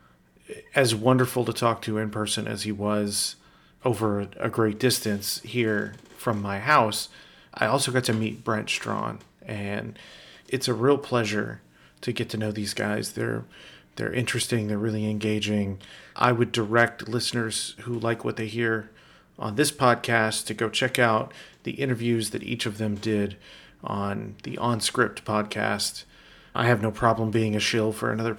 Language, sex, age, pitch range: English, male, 40-59, 105-120 Hz